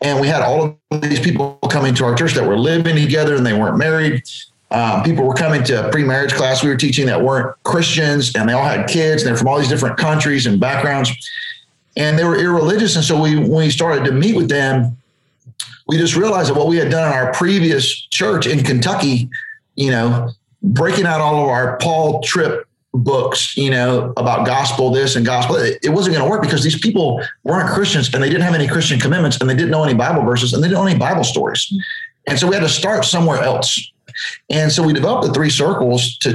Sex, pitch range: male, 125-160 Hz